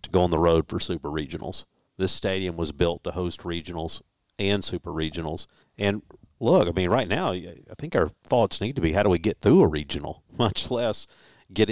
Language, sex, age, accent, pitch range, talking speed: English, male, 50-69, American, 90-115 Hz, 210 wpm